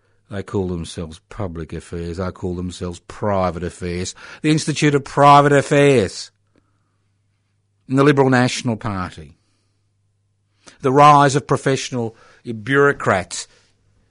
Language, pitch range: English, 100-130 Hz